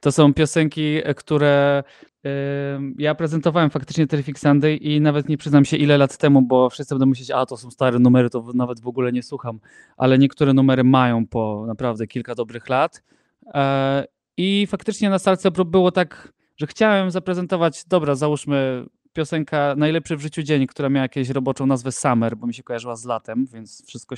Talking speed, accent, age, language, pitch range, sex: 180 wpm, native, 20-39, Polish, 130-155 Hz, male